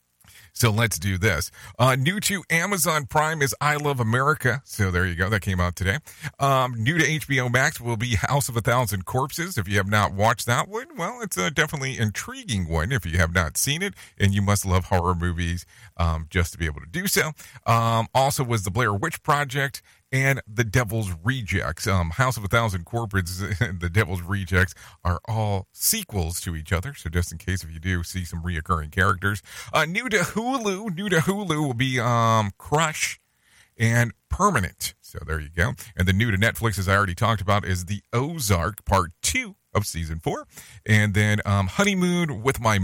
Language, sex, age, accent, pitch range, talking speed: English, male, 40-59, American, 95-130 Hz, 205 wpm